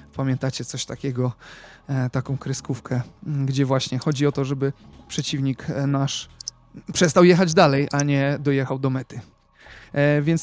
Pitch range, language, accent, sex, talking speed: 140-170 Hz, Polish, native, male, 125 wpm